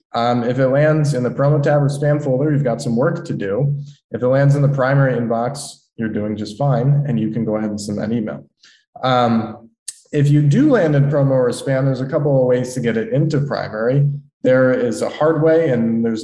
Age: 20-39